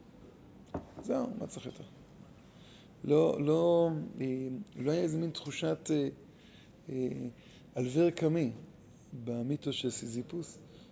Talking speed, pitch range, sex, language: 95 wpm, 125-165 Hz, male, Hebrew